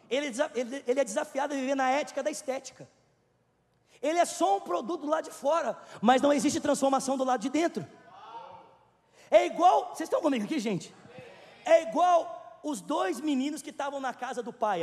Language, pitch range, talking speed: Portuguese, 260-320 Hz, 180 wpm